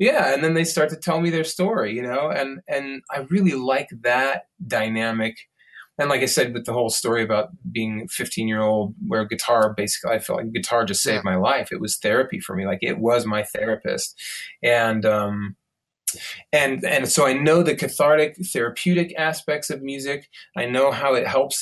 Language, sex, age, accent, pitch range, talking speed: English, male, 20-39, American, 115-155 Hz, 195 wpm